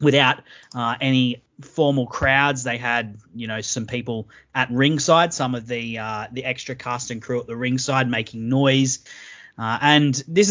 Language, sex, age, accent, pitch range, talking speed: English, male, 30-49, Australian, 120-140 Hz, 170 wpm